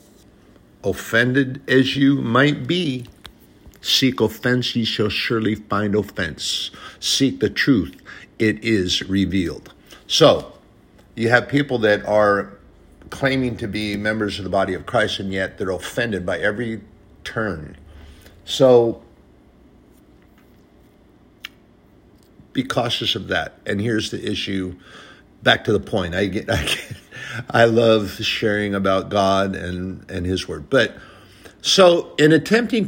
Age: 50-69